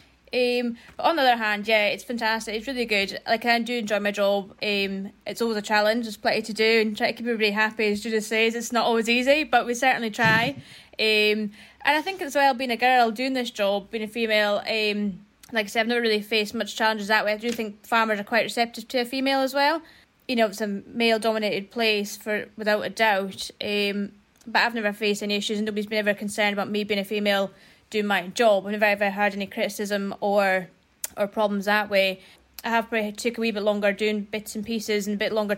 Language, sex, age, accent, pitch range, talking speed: English, female, 20-39, British, 205-235 Hz, 240 wpm